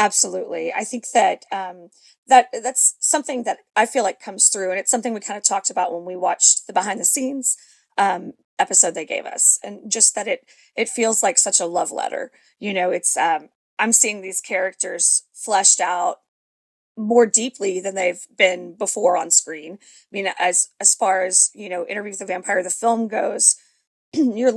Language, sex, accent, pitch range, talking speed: English, female, American, 200-245 Hz, 190 wpm